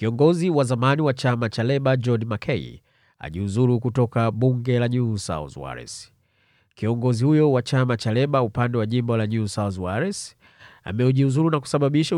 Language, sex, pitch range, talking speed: Swahili, male, 110-135 Hz, 155 wpm